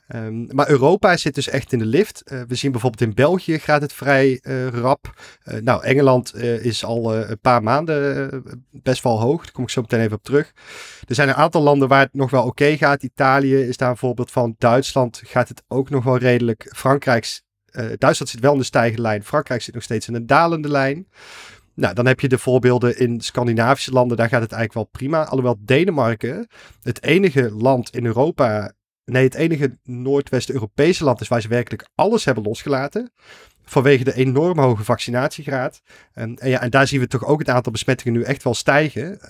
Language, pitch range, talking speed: Dutch, 120-140 Hz, 210 wpm